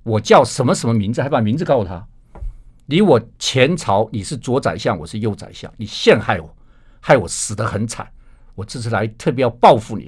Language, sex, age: Chinese, male, 50-69